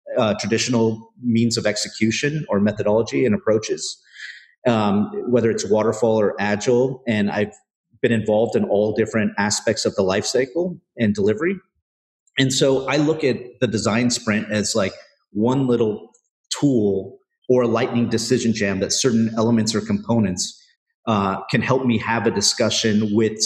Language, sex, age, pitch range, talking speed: English, male, 40-59, 105-120 Hz, 155 wpm